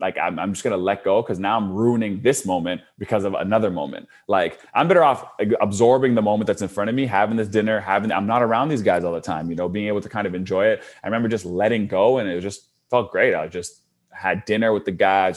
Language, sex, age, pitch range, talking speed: English, male, 20-39, 90-110 Hz, 265 wpm